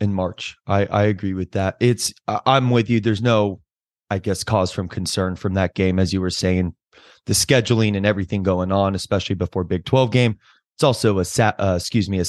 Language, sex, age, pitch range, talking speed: English, male, 20-39, 95-110 Hz, 210 wpm